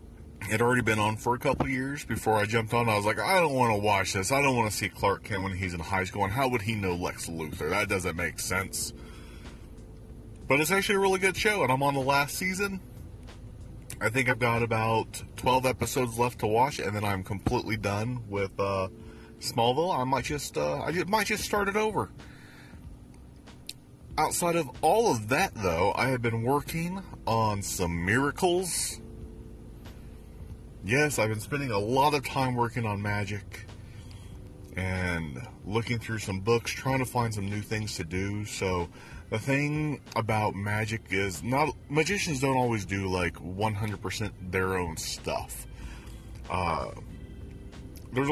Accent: American